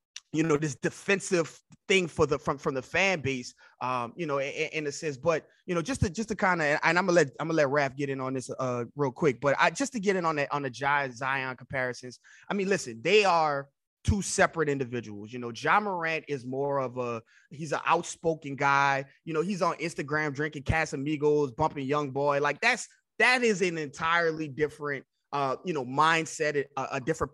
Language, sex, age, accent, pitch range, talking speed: English, male, 20-39, American, 140-170 Hz, 220 wpm